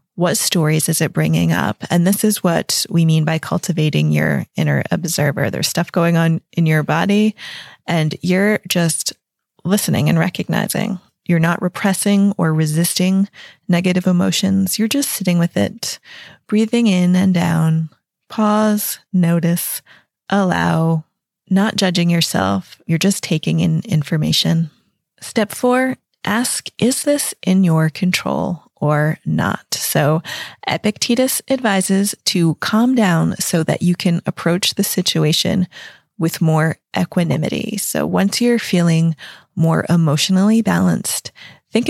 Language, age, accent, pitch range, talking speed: English, 30-49, American, 165-205 Hz, 130 wpm